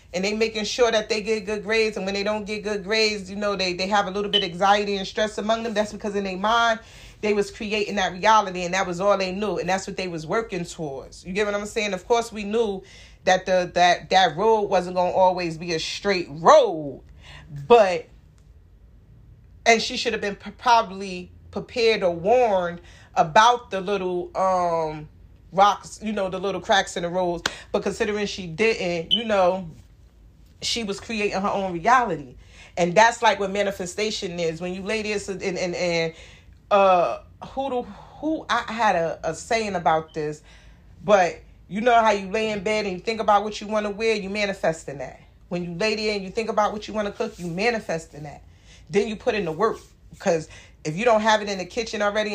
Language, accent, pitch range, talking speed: English, American, 180-220 Hz, 215 wpm